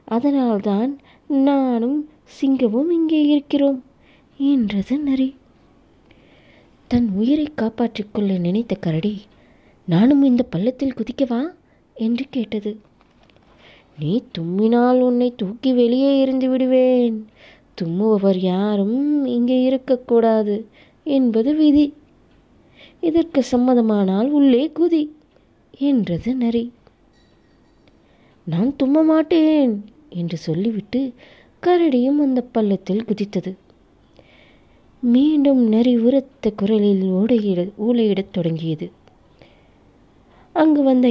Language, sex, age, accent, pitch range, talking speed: Tamil, female, 20-39, native, 205-270 Hz, 80 wpm